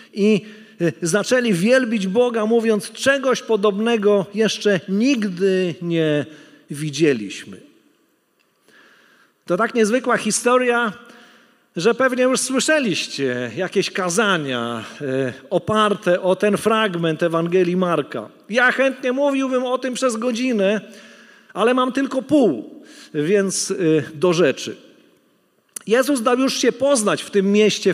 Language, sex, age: Polish, male, 40-59